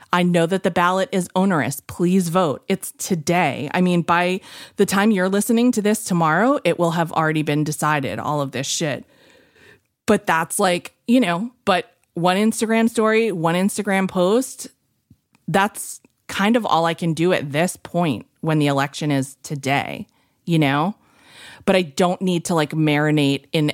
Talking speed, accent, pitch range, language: 170 wpm, American, 150-190 Hz, English